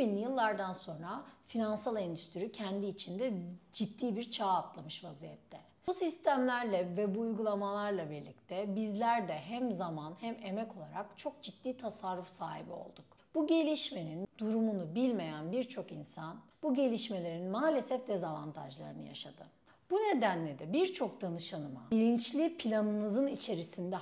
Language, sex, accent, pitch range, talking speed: Turkish, female, native, 190-275 Hz, 120 wpm